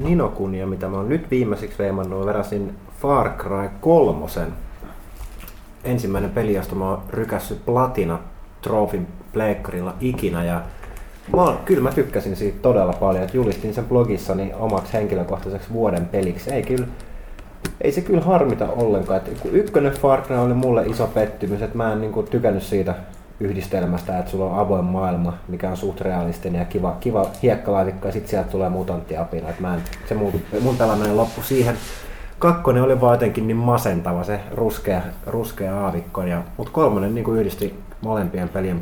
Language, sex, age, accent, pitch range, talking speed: Finnish, male, 30-49, native, 95-120 Hz, 155 wpm